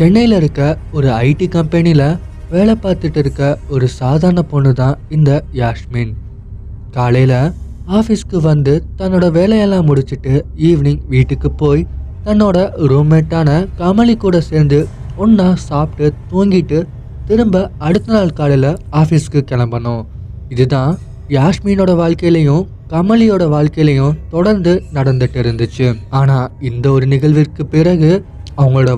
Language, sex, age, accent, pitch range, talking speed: Tamil, male, 20-39, native, 125-170 Hz, 100 wpm